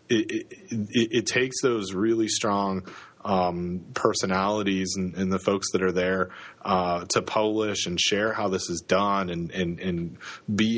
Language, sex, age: English, male, 30-49